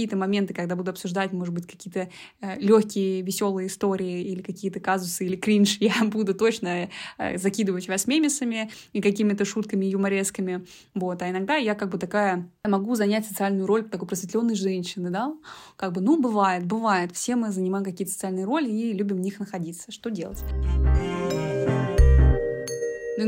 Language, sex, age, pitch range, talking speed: Russian, female, 20-39, 190-220 Hz, 155 wpm